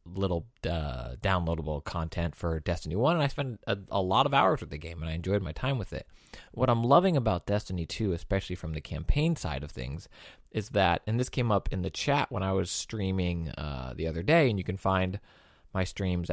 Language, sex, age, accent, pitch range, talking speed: English, male, 20-39, American, 85-105 Hz, 225 wpm